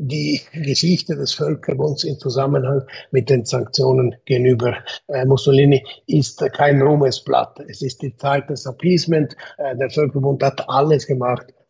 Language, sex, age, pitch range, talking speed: German, male, 60-79, 130-150 Hz, 130 wpm